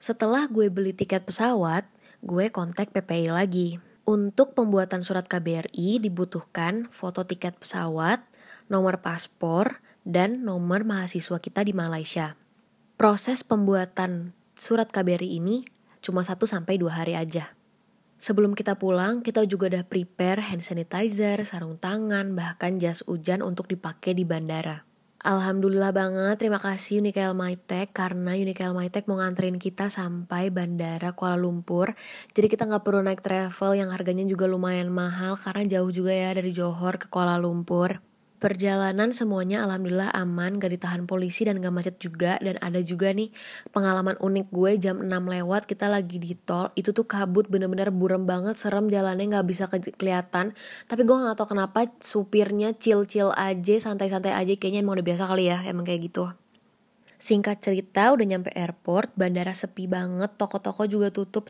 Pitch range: 180-205 Hz